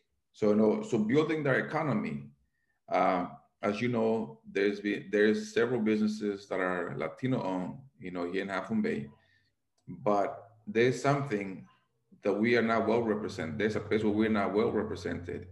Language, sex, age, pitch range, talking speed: English, male, 40-59, 95-115 Hz, 165 wpm